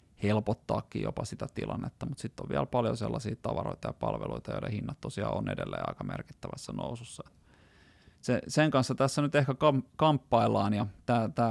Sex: male